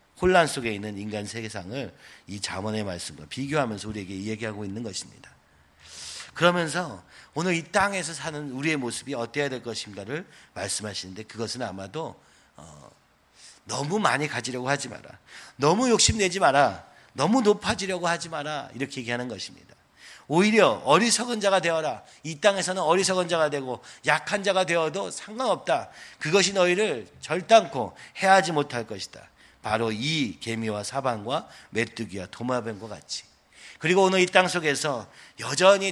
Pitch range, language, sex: 110-170 Hz, Korean, male